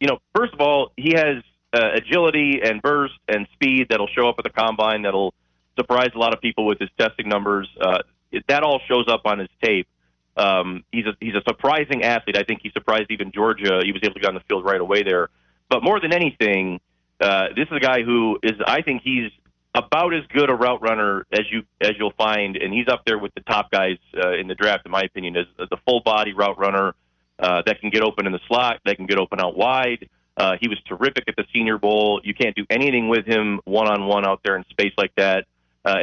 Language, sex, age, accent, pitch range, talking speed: English, male, 30-49, American, 95-120 Hz, 240 wpm